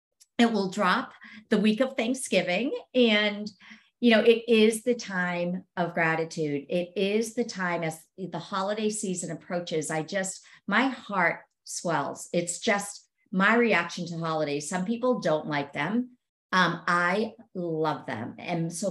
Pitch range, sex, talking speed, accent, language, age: 175-230 Hz, female, 150 wpm, American, English, 50-69